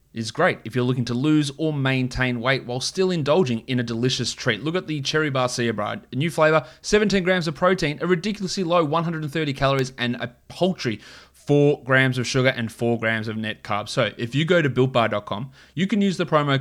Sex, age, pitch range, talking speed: male, 20-39, 120-155 Hz, 215 wpm